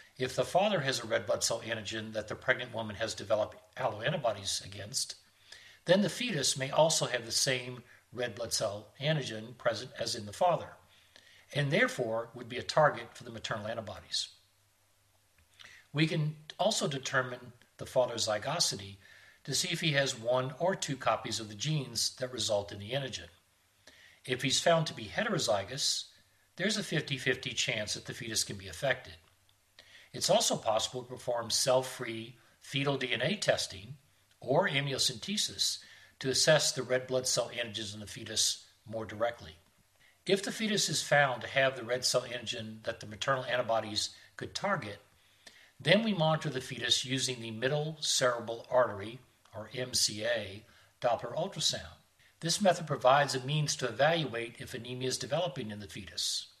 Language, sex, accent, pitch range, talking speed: English, male, American, 110-140 Hz, 160 wpm